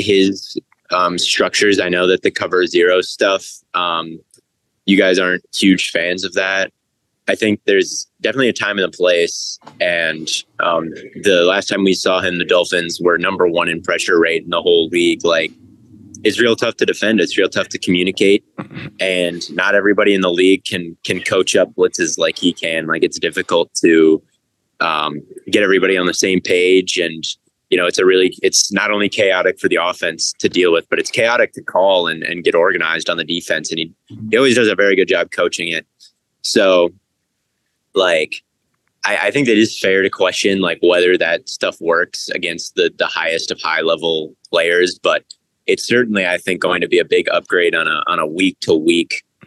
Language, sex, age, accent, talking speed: English, male, 20-39, American, 195 wpm